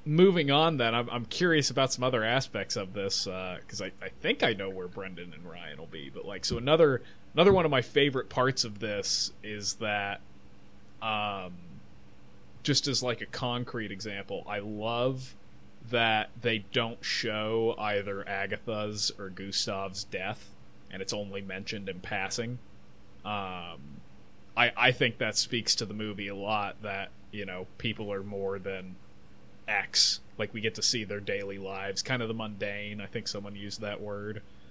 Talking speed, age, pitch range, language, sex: 170 wpm, 20-39, 100-120 Hz, English, male